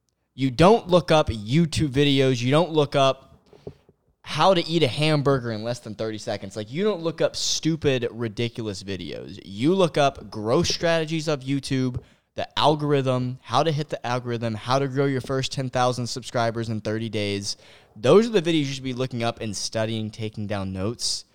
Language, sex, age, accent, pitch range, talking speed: English, male, 20-39, American, 100-135 Hz, 185 wpm